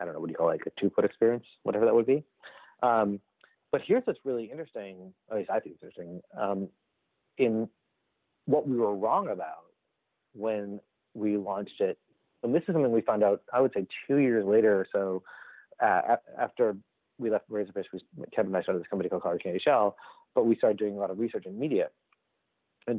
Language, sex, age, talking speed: English, male, 30-49, 205 wpm